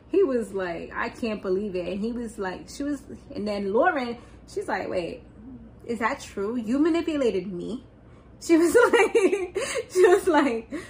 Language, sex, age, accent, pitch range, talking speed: English, female, 20-39, American, 215-275 Hz, 170 wpm